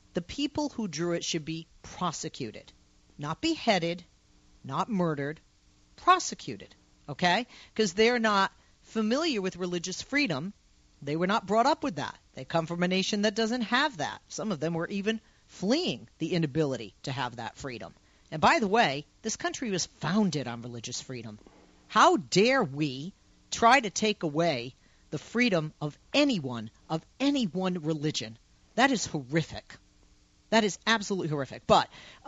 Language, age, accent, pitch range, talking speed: English, 40-59, American, 150-225 Hz, 155 wpm